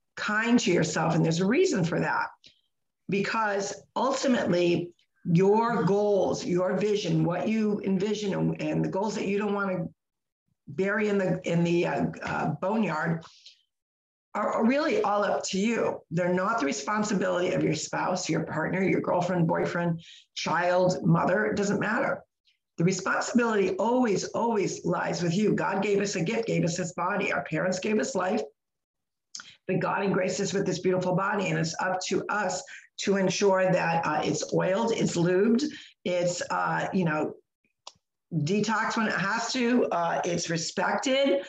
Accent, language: American, English